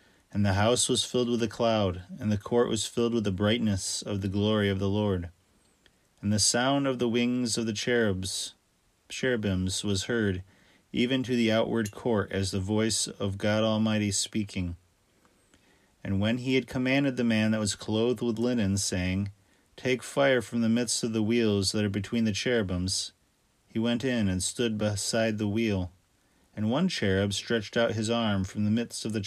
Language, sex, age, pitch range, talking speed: English, male, 30-49, 100-120 Hz, 185 wpm